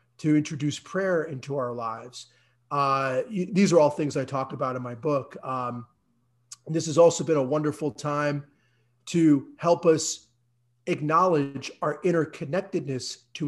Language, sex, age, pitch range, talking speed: English, male, 30-49, 130-165 Hz, 140 wpm